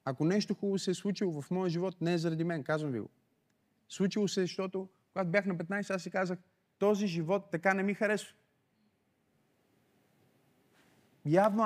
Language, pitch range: Bulgarian, 160-210 Hz